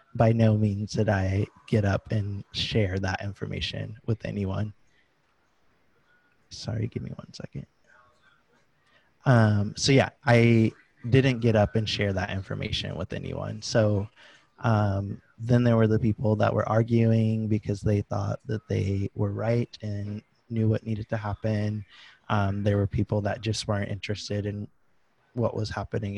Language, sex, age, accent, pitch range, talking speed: English, male, 20-39, American, 100-115 Hz, 150 wpm